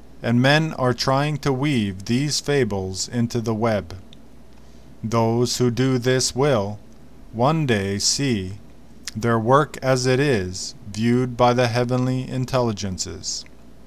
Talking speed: 125 wpm